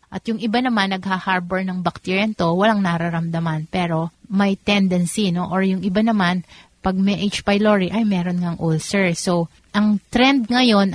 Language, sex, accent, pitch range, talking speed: Filipino, female, native, 180-210 Hz, 165 wpm